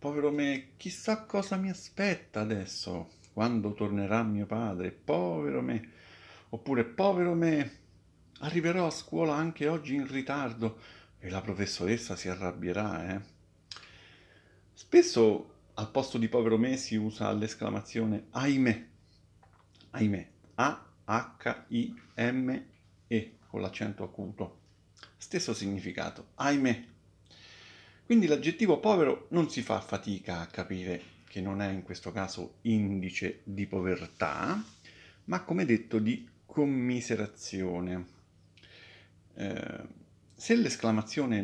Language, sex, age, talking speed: Italian, male, 50-69, 105 wpm